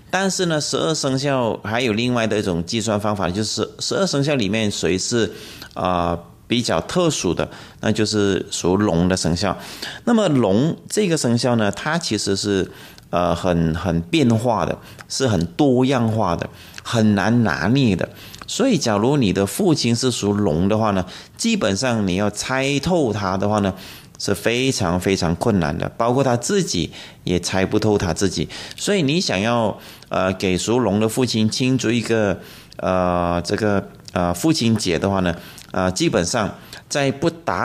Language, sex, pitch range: Chinese, male, 90-125 Hz